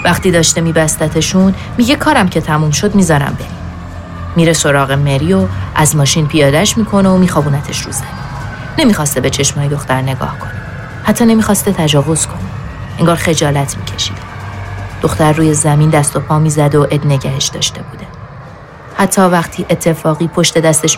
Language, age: Persian, 30-49